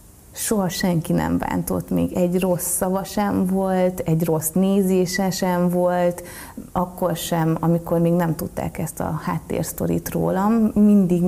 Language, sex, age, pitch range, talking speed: Hungarian, female, 30-49, 165-185 Hz, 140 wpm